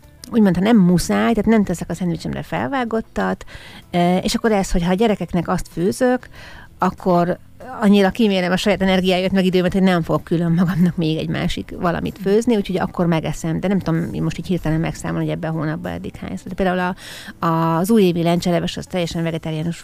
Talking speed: 190 wpm